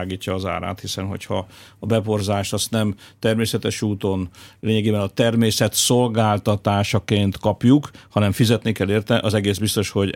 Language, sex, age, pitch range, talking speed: Hungarian, male, 50-69, 100-115 Hz, 140 wpm